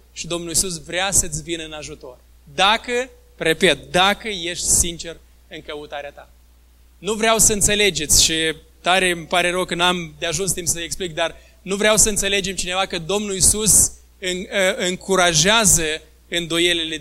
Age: 20-39